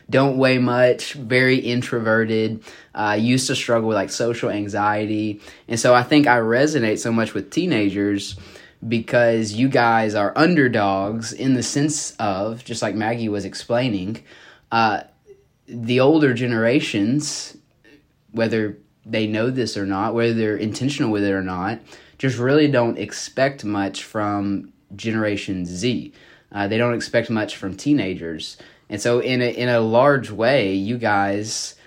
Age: 20-39